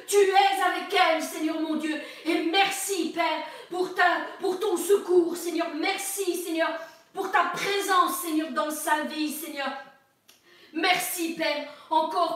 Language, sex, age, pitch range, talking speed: French, female, 40-59, 320-375 Hz, 135 wpm